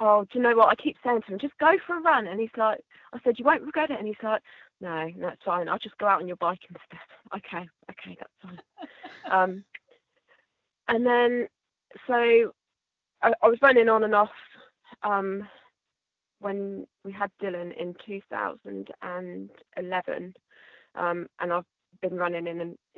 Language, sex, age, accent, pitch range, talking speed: English, female, 20-39, British, 180-225 Hz, 175 wpm